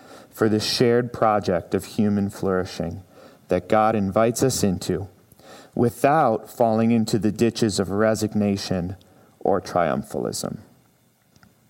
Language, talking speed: English, 110 wpm